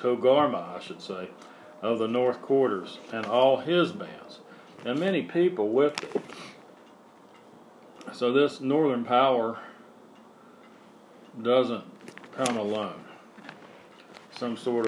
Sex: male